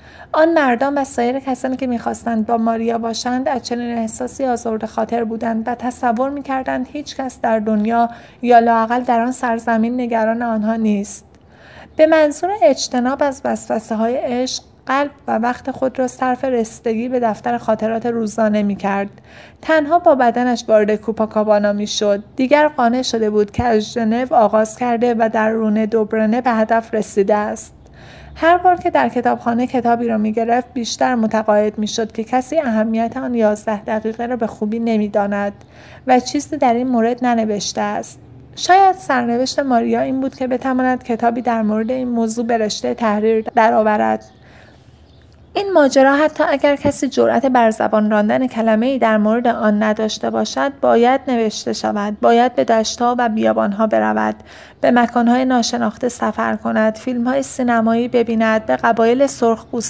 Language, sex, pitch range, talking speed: Persian, female, 220-255 Hz, 150 wpm